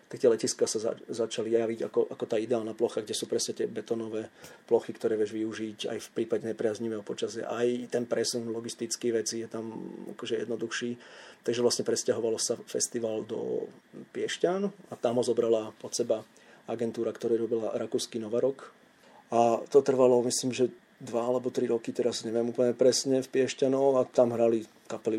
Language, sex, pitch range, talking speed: Slovak, male, 115-155 Hz, 165 wpm